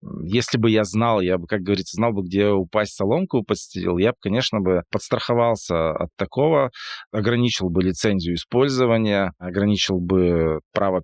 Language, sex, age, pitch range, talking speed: Russian, male, 20-39, 95-120 Hz, 145 wpm